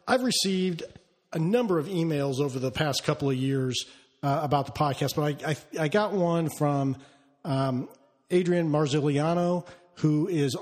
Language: English